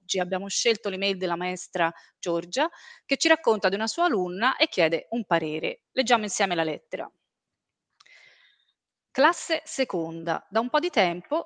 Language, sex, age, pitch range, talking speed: Italian, female, 30-49, 185-265 Hz, 150 wpm